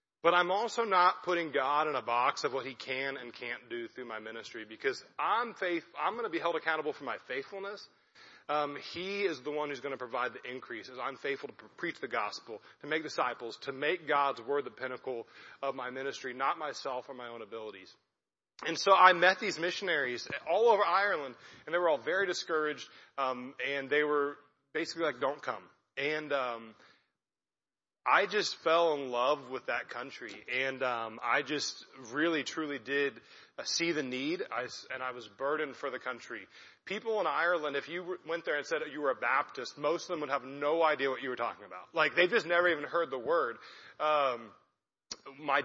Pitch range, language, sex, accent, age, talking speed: 135-170 Hz, English, male, American, 30-49, 200 wpm